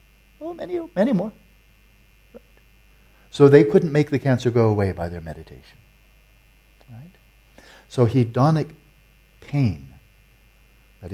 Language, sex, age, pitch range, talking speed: English, male, 60-79, 105-130 Hz, 115 wpm